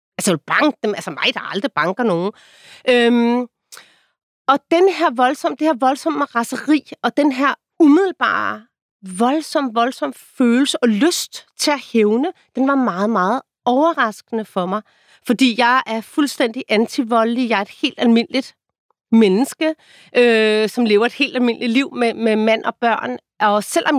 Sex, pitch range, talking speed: female, 210-265 Hz, 150 wpm